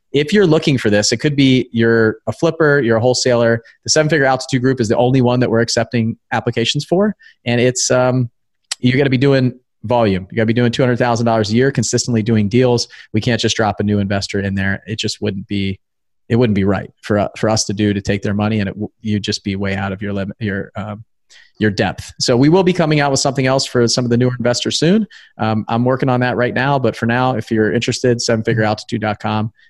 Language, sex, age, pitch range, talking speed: English, male, 30-49, 105-130 Hz, 245 wpm